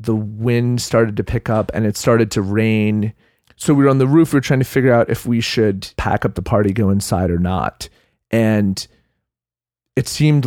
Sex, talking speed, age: male, 210 wpm, 40-59